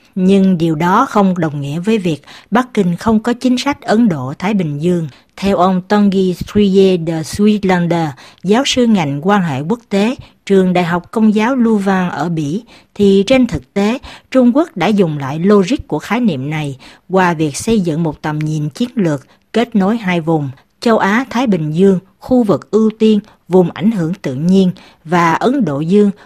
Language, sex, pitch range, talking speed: Vietnamese, female, 160-215 Hz, 190 wpm